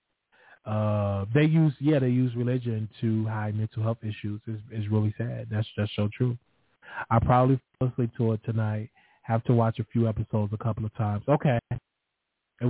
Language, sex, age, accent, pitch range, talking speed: English, male, 20-39, American, 110-130 Hz, 185 wpm